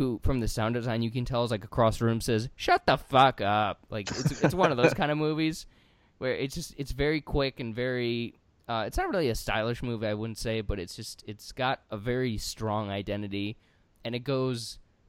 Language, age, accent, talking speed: English, 20-39, American, 225 wpm